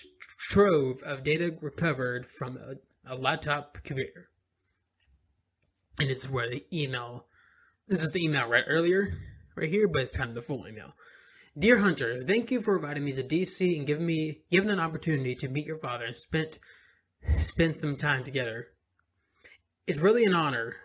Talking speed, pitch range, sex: 170 wpm, 130-175 Hz, male